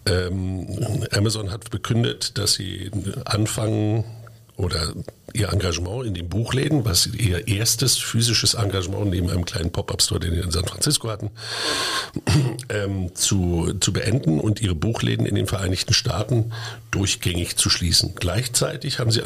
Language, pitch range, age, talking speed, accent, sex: German, 95-115 Hz, 50-69, 135 wpm, German, male